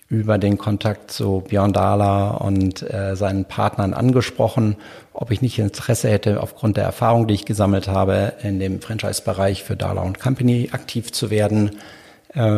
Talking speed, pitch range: 160 wpm, 100-125 Hz